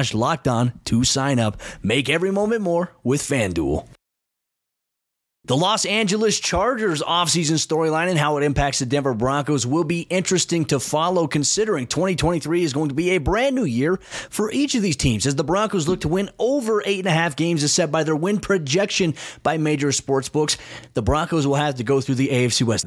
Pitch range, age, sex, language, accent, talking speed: 120-155 Hz, 30-49, male, English, American, 200 wpm